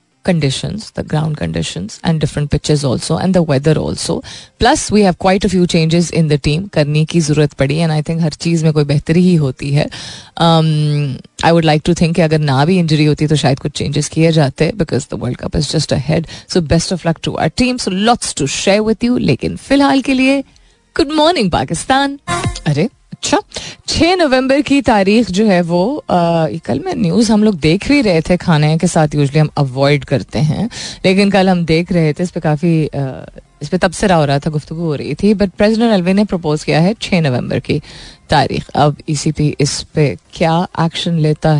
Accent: native